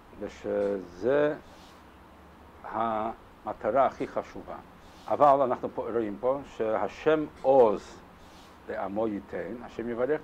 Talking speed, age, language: 90 wpm, 60-79, Hebrew